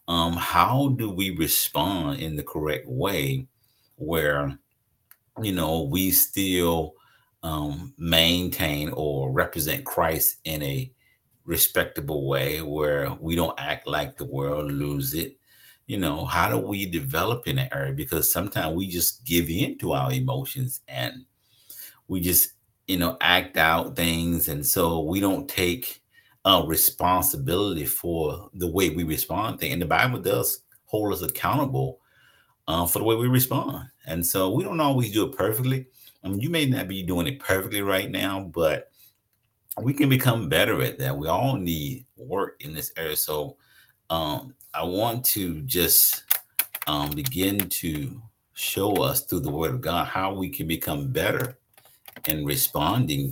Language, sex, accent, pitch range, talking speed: English, male, American, 80-125 Hz, 155 wpm